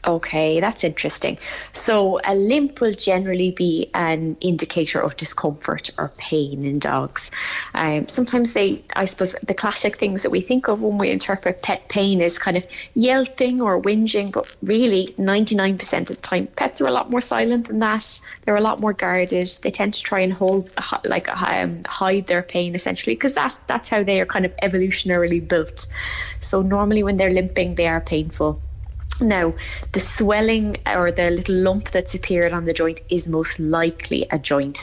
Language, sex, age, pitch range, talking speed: English, female, 20-39, 165-205 Hz, 185 wpm